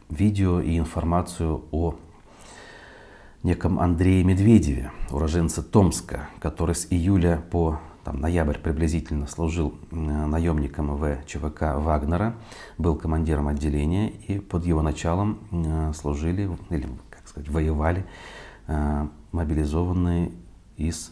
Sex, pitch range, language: male, 75-90 Hz, Russian